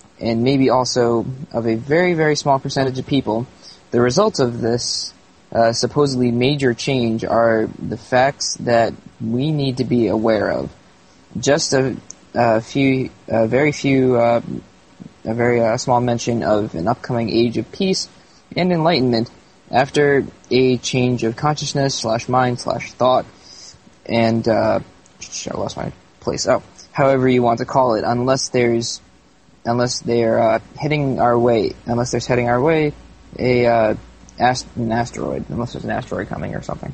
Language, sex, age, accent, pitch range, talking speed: English, male, 20-39, American, 115-135 Hz, 160 wpm